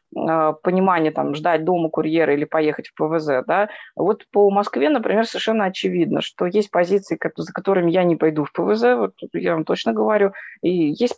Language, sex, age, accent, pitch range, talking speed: Russian, female, 20-39, native, 170-220 Hz, 175 wpm